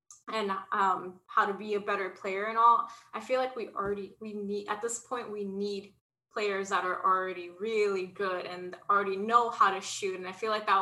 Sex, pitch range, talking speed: female, 195-235 Hz, 215 wpm